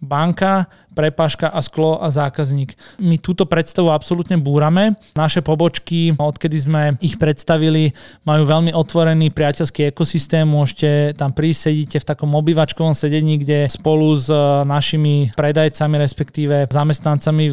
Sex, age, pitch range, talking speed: male, 20-39, 145-160 Hz, 125 wpm